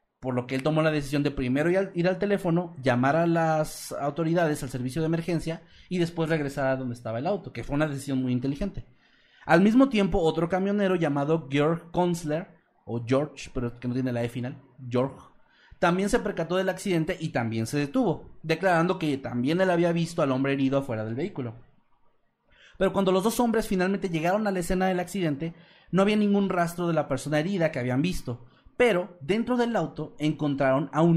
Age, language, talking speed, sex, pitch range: 30-49, Spanish, 195 wpm, male, 140-185 Hz